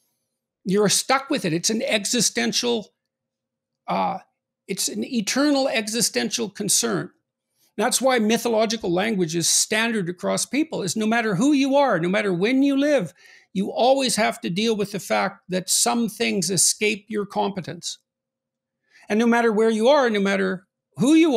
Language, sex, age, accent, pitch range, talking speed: English, male, 60-79, American, 190-235 Hz, 160 wpm